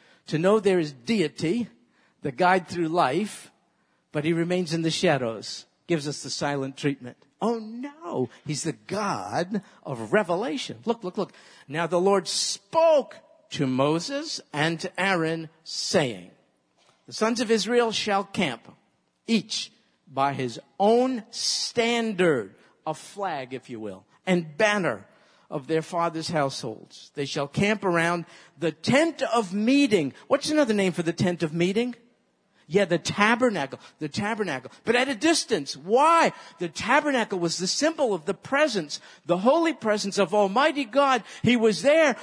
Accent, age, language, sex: American, 50-69, English, male